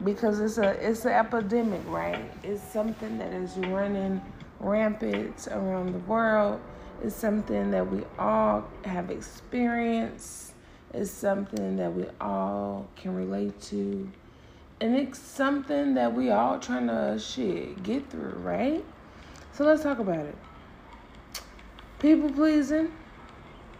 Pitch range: 195-250 Hz